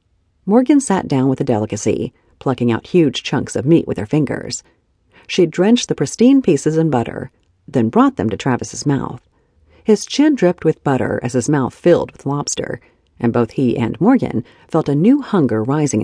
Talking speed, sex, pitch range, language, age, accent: 185 wpm, female, 115-170 Hz, English, 40-59, American